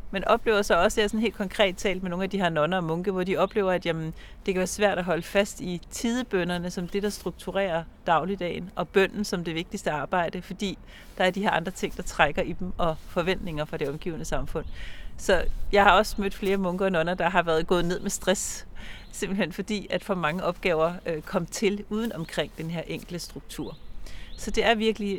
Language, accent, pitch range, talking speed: Danish, native, 160-195 Hz, 220 wpm